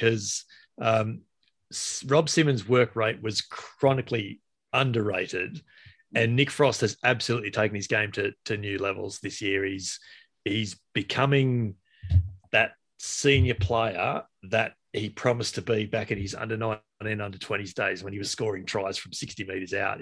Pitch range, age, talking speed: 100-120 Hz, 30-49, 145 wpm